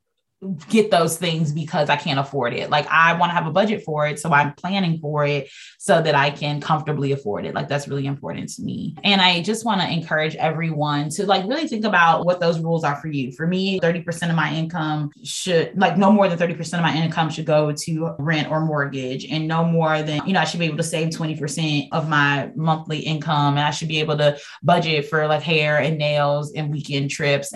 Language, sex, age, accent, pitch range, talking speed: English, female, 20-39, American, 150-185 Hz, 230 wpm